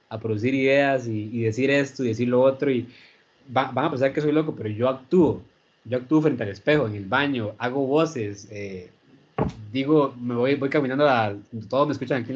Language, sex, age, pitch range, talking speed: Spanish, male, 20-39, 110-145 Hz, 215 wpm